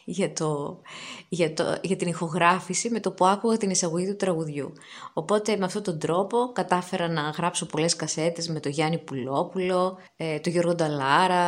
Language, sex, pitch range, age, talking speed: Greek, female, 160-200 Hz, 20-39, 170 wpm